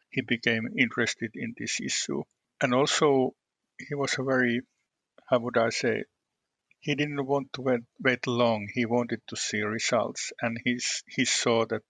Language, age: English, 50-69